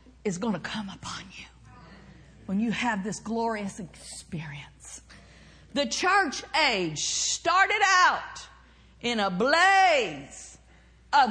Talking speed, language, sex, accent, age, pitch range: 110 wpm, English, female, American, 50-69, 230-345 Hz